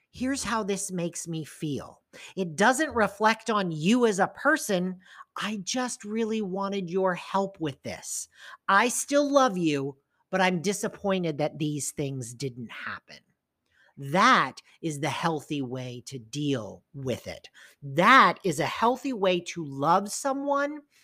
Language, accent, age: English, American, 50-69